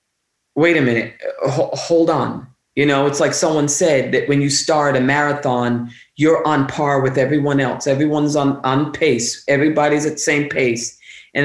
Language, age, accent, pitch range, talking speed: English, 40-59, American, 140-195 Hz, 175 wpm